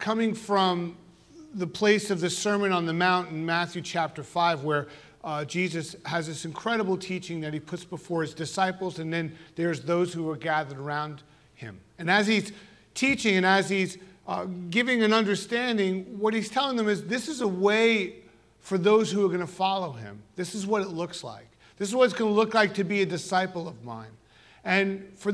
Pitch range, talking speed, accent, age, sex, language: 170-215 Hz, 205 wpm, American, 40-59, male, English